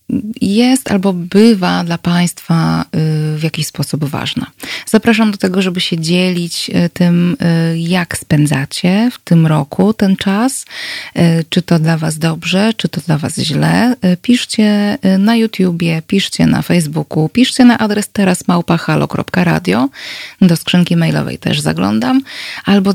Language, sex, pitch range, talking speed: Polish, female, 160-200 Hz, 130 wpm